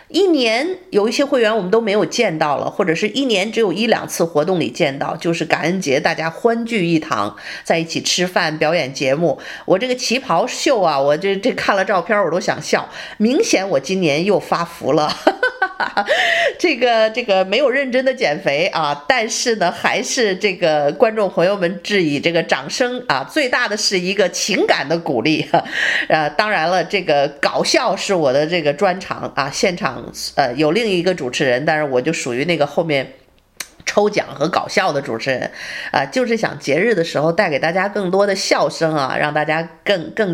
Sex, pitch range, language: female, 160-225 Hz, Chinese